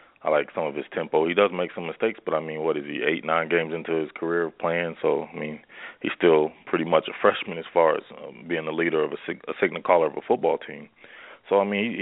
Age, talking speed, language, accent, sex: 20-39, 270 wpm, English, American, male